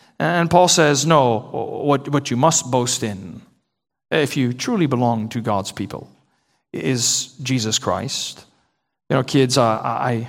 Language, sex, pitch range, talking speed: English, male, 120-150 Hz, 145 wpm